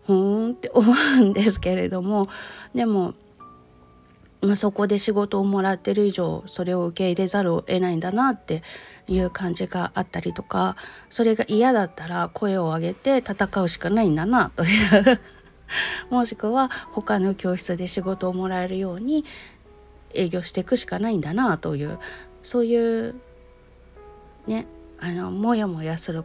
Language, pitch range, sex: Japanese, 175-235 Hz, female